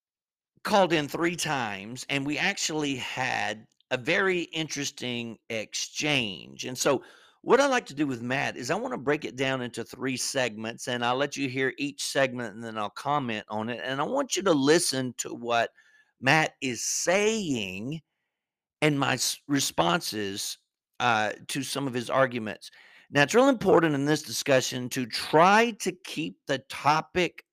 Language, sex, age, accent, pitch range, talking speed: English, male, 50-69, American, 120-165 Hz, 170 wpm